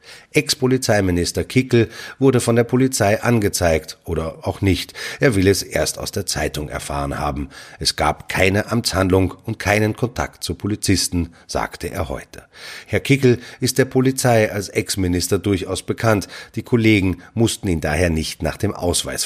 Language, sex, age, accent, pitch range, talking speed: German, male, 30-49, German, 90-115 Hz, 155 wpm